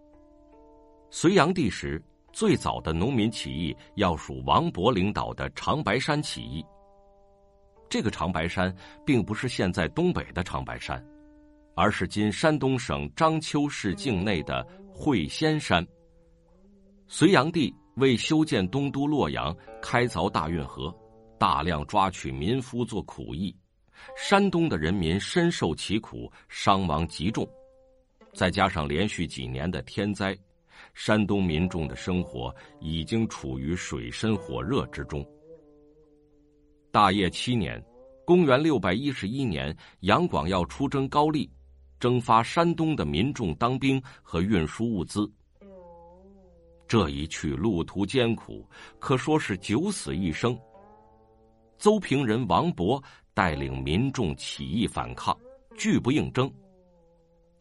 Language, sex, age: Chinese, male, 50-69